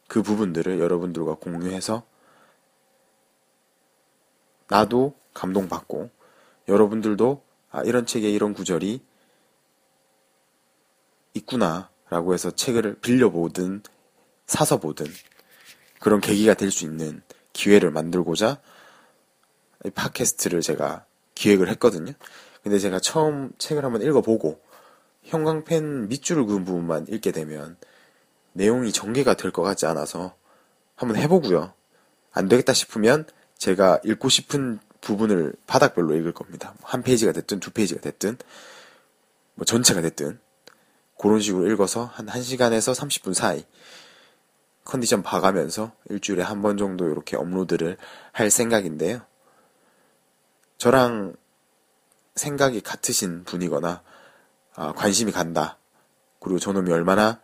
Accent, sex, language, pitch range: native, male, Korean, 90-120 Hz